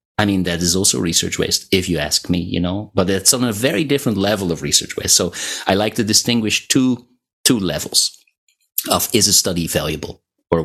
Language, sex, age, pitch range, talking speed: English, male, 30-49, 95-125 Hz, 210 wpm